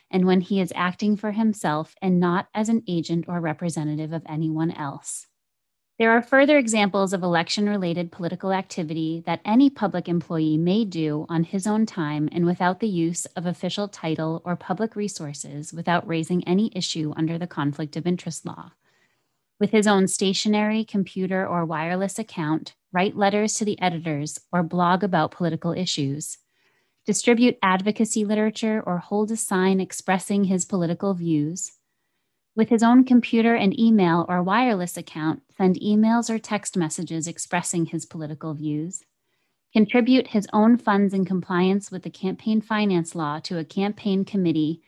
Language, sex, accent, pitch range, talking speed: English, female, American, 165-210 Hz, 155 wpm